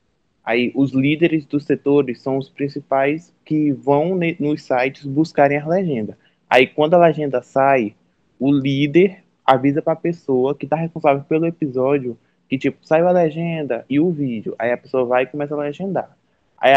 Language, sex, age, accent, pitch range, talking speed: Portuguese, male, 20-39, Brazilian, 130-155 Hz, 180 wpm